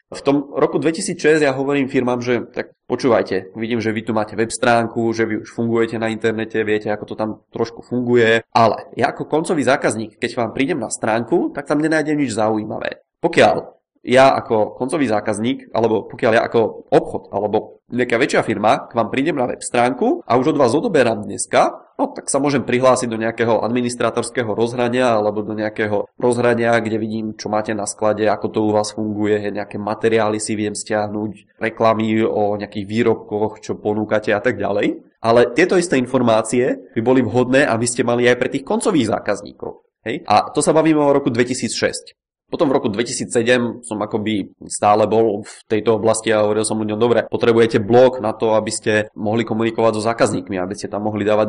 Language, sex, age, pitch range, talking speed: Czech, male, 20-39, 110-125 Hz, 190 wpm